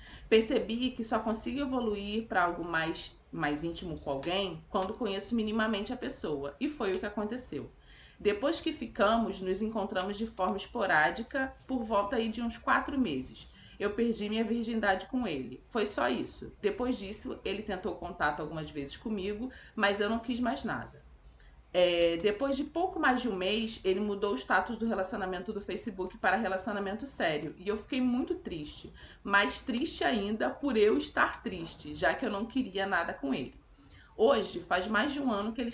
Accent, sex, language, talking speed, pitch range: Brazilian, female, Portuguese, 180 wpm, 190-245 Hz